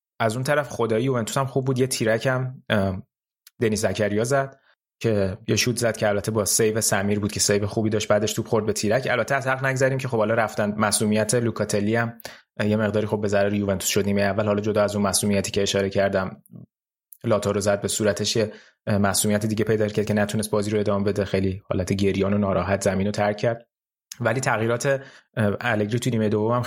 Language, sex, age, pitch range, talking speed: Persian, male, 20-39, 105-130 Hz, 200 wpm